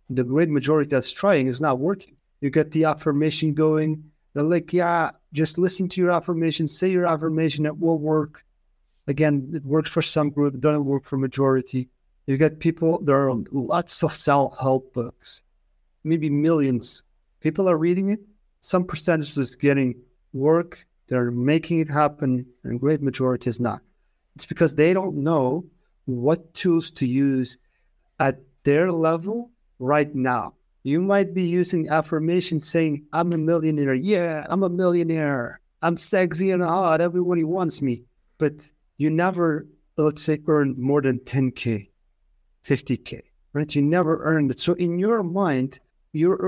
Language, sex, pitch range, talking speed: English, male, 135-170 Hz, 160 wpm